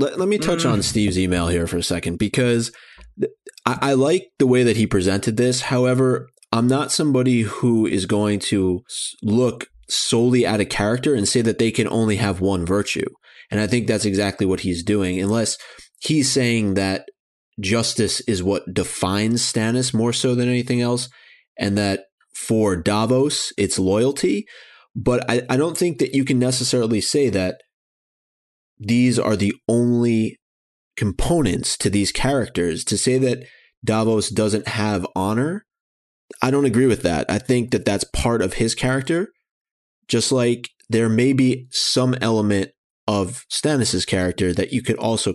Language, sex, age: English, male, 20-39